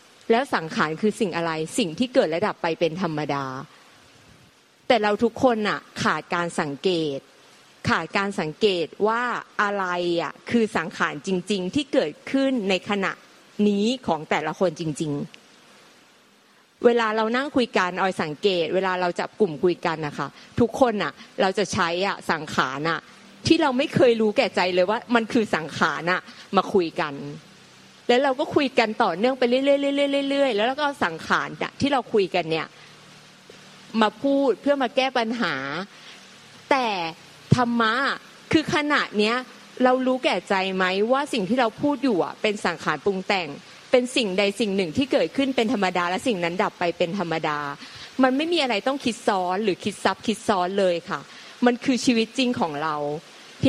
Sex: female